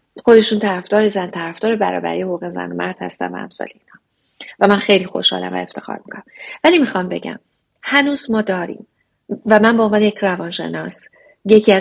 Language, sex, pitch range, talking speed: Persian, female, 190-235 Hz, 165 wpm